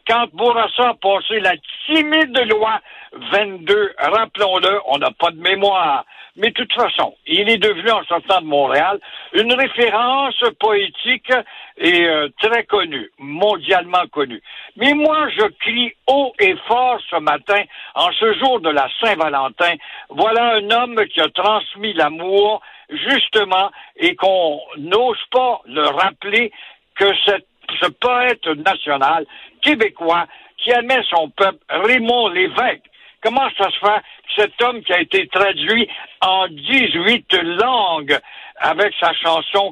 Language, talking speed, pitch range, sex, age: French, 140 wpm, 180-245 Hz, male, 60-79